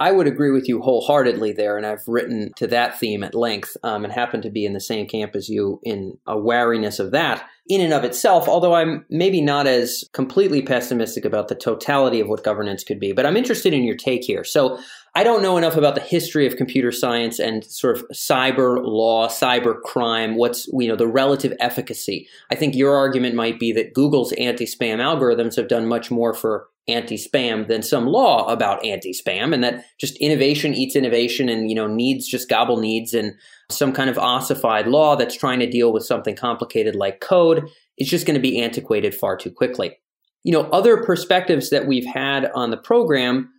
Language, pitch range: English, 115-145 Hz